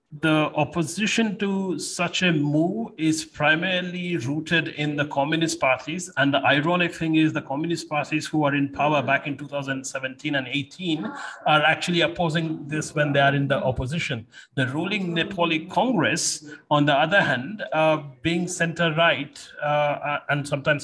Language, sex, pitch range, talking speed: English, male, 135-160 Hz, 155 wpm